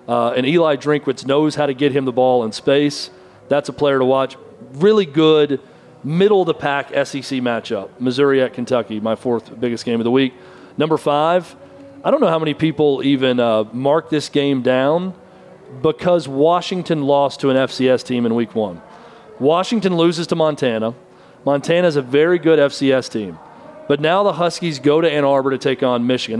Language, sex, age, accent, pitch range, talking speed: English, male, 40-59, American, 135-170 Hz, 180 wpm